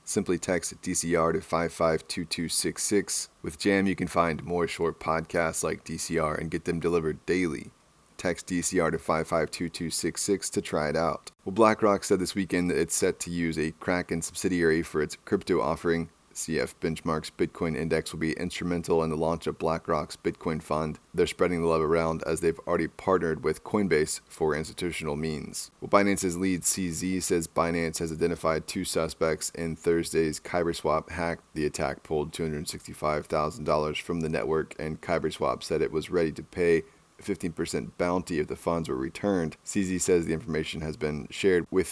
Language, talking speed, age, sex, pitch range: English, 165 wpm, 20-39, male, 80-90 Hz